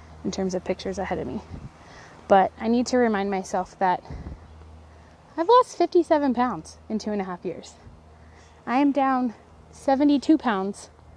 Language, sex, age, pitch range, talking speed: English, female, 20-39, 185-230 Hz, 155 wpm